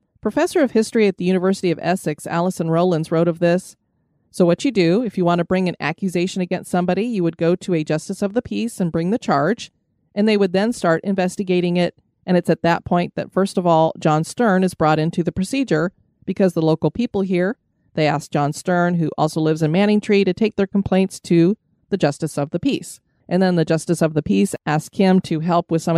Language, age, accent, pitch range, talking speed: English, 30-49, American, 165-200 Hz, 230 wpm